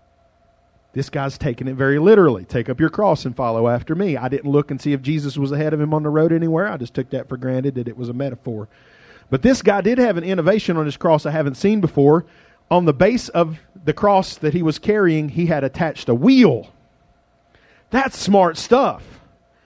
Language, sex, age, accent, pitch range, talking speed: English, male, 40-59, American, 140-210 Hz, 220 wpm